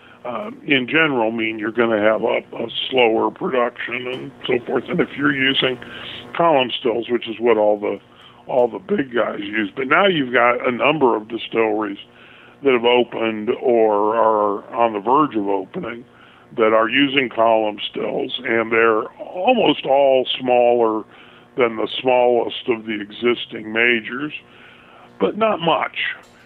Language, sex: English, female